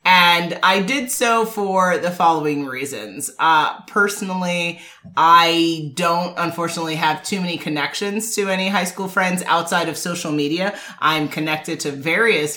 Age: 30-49